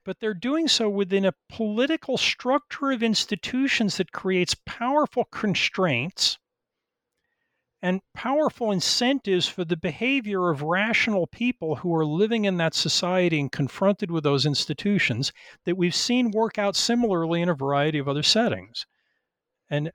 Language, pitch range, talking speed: English, 145-205 Hz, 140 wpm